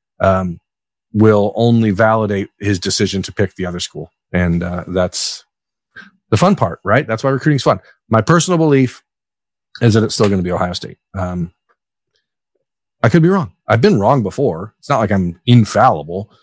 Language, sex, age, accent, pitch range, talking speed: English, male, 40-59, American, 100-115 Hz, 180 wpm